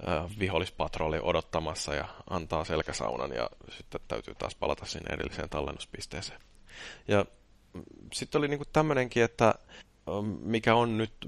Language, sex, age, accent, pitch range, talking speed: Finnish, male, 30-49, native, 90-105 Hz, 115 wpm